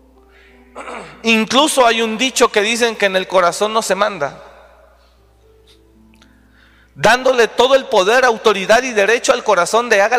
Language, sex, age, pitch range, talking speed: Spanish, male, 40-59, 165-235 Hz, 140 wpm